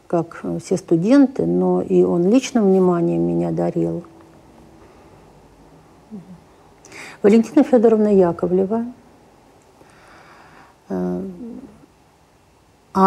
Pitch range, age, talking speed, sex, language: 175-235 Hz, 50-69, 65 wpm, female, Russian